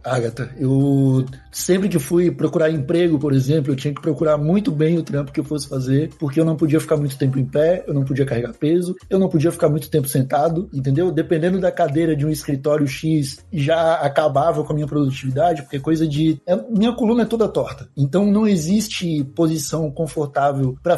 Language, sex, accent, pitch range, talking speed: Portuguese, male, Brazilian, 145-180 Hz, 205 wpm